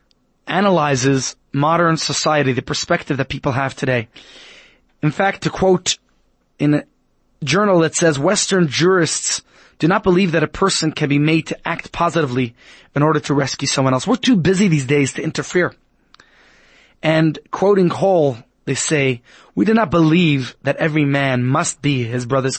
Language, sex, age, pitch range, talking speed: English, male, 30-49, 145-190 Hz, 160 wpm